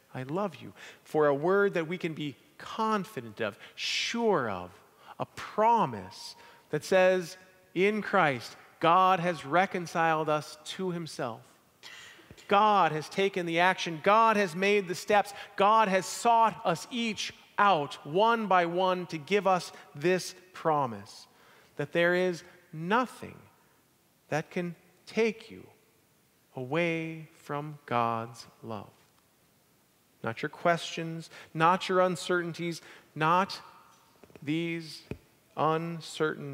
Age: 40-59